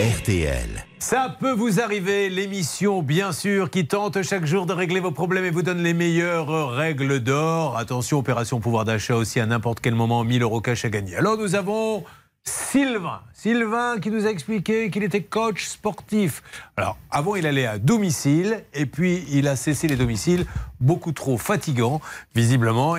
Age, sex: 40-59, male